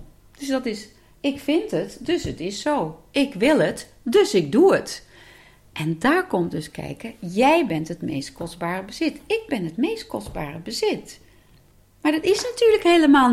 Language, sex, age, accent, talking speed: Dutch, female, 40-59, Dutch, 175 wpm